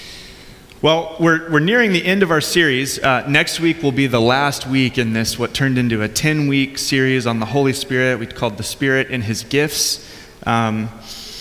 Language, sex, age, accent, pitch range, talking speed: English, male, 30-49, American, 110-140 Hz, 195 wpm